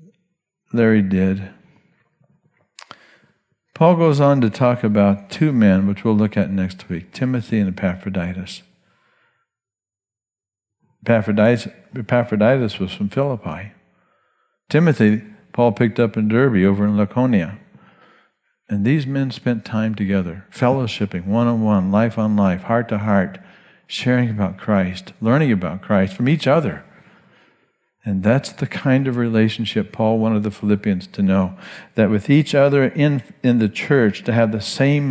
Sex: male